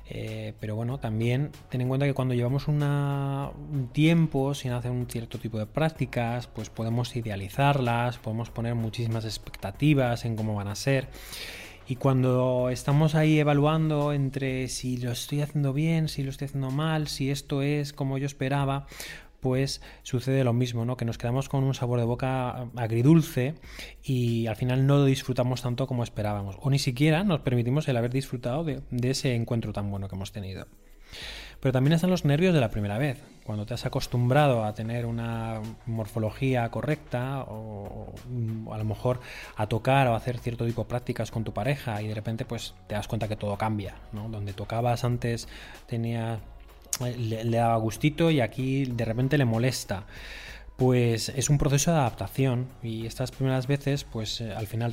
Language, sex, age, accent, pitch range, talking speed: Spanish, male, 20-39, Spanish, 115-140 Hz, 180 wpm